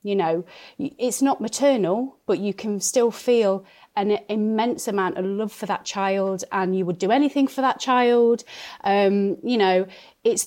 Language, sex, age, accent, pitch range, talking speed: English, female, 30-49, British, 185-235 Hz, 170 wpm